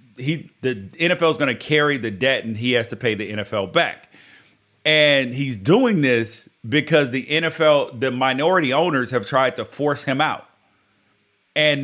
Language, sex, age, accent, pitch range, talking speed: English, male, 30-49, American, 115-155 Hz, 170 wpm